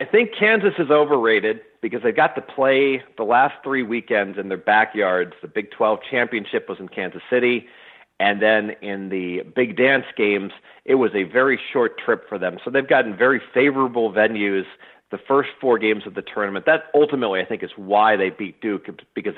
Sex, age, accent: male, 40-59, American